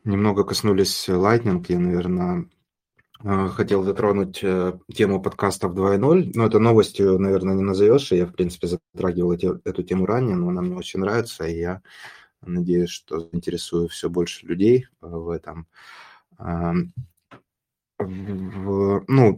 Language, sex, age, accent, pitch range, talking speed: Russian, male, 20-39, native, 90-100 Hz, 125 wpm